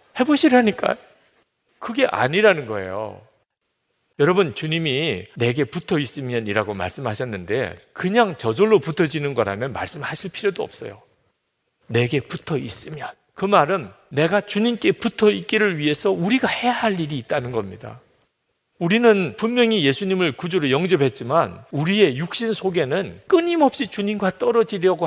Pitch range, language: 135-220 Hz, Korean